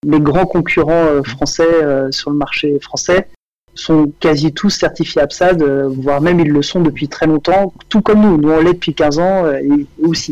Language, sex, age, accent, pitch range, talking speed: French, male, 30-49, French, 150-200 Hz, 210 wpm